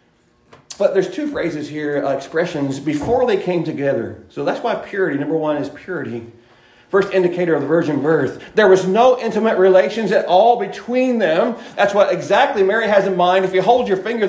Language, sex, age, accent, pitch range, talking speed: English, male, 40-59, American, 160-225 Hz, 195 wpm